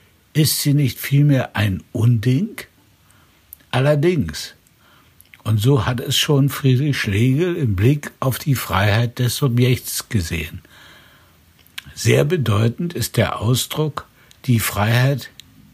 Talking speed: 110 wpm